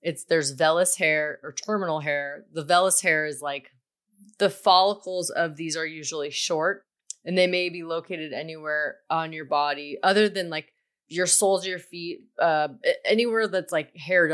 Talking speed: 165 wpm